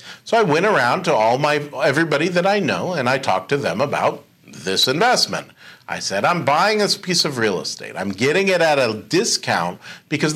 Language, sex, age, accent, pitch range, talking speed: English, male, 50-69, American, 115-150 Hz, 205 wpm